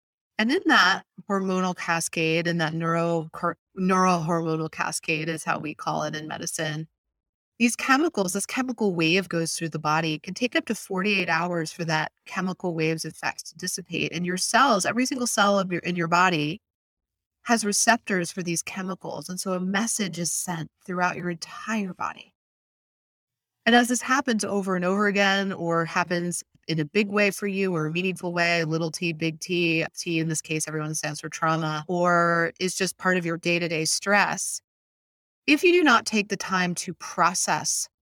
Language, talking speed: English, 180 wpm